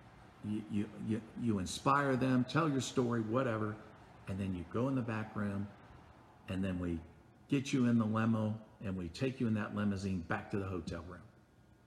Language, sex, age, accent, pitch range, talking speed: English, male, 50-69, American, 100-125 Hz, 190 wpm